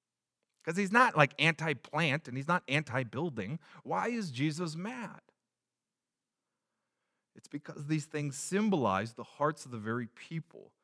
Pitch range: 120-185 Hz